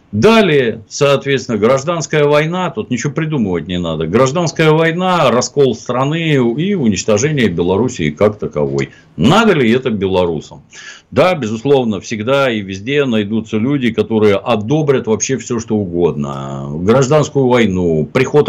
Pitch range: 95-145 Hz